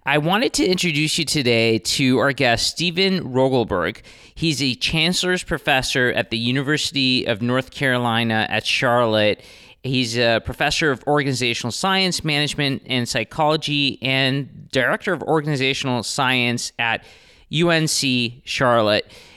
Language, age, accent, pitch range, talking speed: English, 30-49, American, 125-155 Hz, 125 wpm